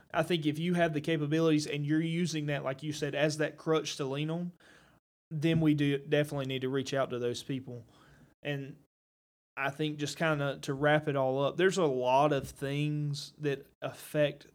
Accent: American